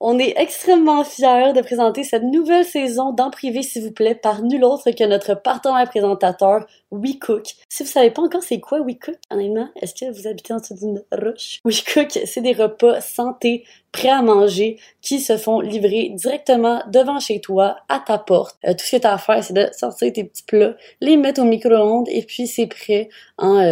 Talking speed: 210 wpm